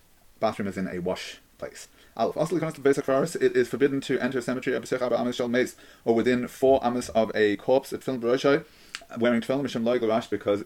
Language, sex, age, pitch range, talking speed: English, male, 30-49, 105-130 Hz, 140 wpm